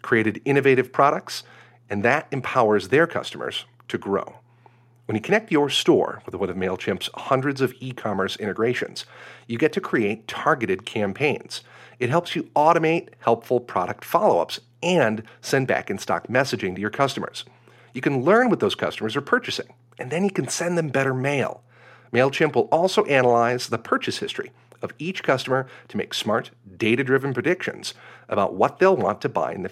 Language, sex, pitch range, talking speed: English, male, 120-140 Hz, 165 wpm